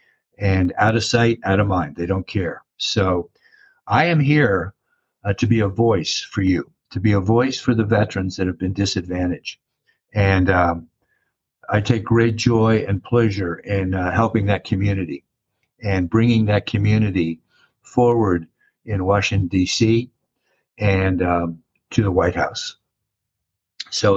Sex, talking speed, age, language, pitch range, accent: male, 150 wpm, 60-79, English, 95-115 Hz, American